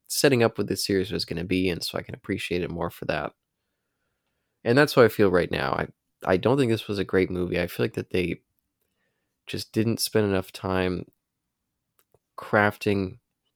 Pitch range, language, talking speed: 95-125 Hz, English, 200 wpm